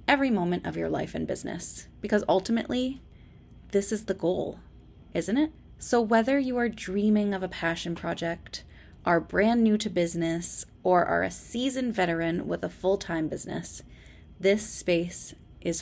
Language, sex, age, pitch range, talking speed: English, female, 20-39, 170-215 Hz, 155 wpm